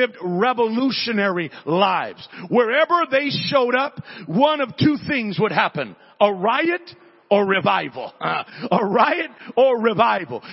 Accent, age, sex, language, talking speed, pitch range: American, 50-69, male, English, 120 wpm, 215-275 Hz